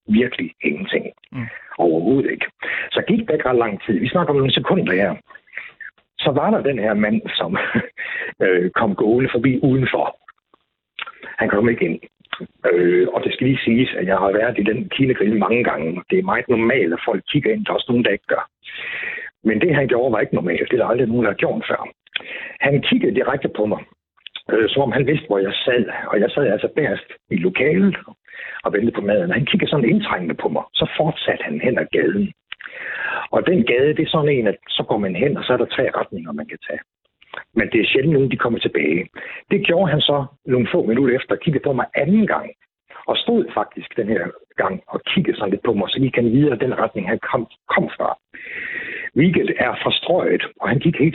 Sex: male